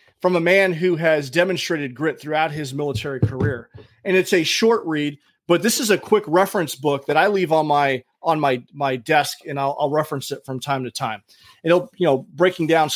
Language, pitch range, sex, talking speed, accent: English, 140-180 Hz, male, 215 wpm, American